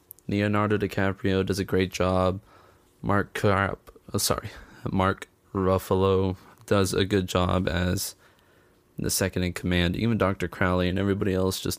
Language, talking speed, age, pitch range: English, 130 wpm, 20-39, 90-100 Hz